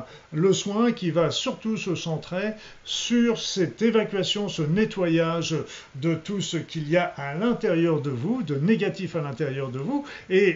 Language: French